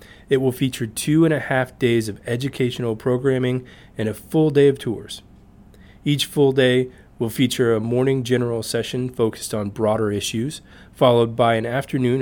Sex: male